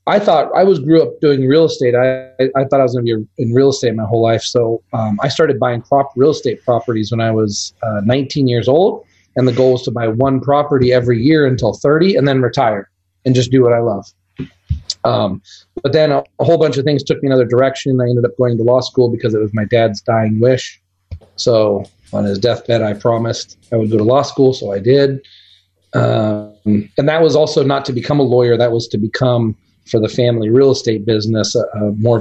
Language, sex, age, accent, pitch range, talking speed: English, male, 30-49, American, 110-135 Hz, 230 wpm